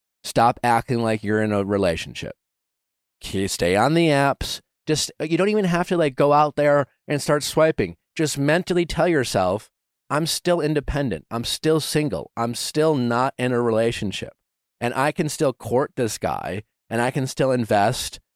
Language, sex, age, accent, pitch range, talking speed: English, male, 30-49, American, 120-155 Hz, 175 wpm